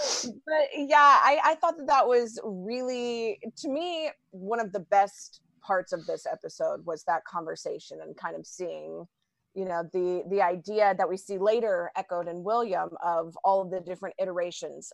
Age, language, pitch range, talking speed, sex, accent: 30-49, English, 185-225 Hz, 175 wpm, female, American